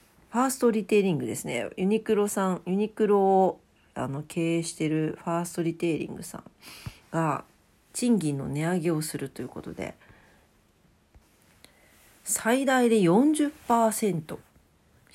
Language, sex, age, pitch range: Japanese, female, 40-59, 160-220 Hz